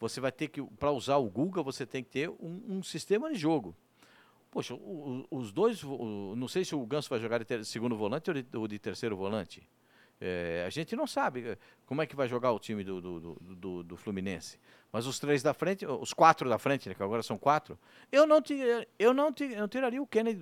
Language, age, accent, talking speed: Portuguese, 50-69, Brazilian, 205 wpm